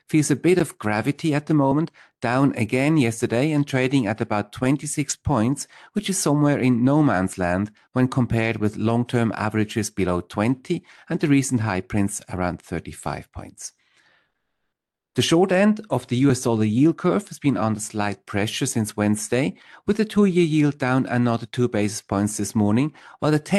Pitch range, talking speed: 105-145 Hz, 175 wpm